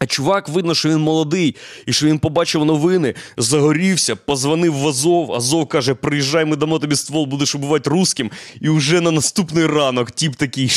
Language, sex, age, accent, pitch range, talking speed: Ukrainian, male, 20-39, native, 125-170 Hz, 180 wpm